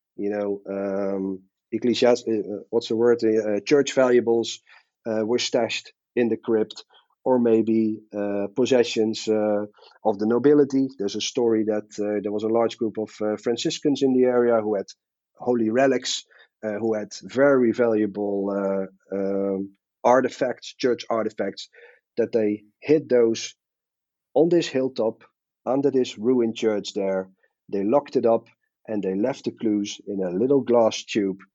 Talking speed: 150 wpm